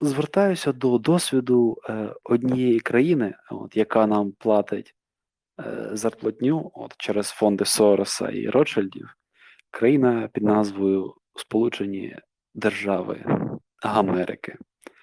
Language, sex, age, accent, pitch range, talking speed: Ukrainian, male, 20-39, native, 105-130 Hz, 90 wpm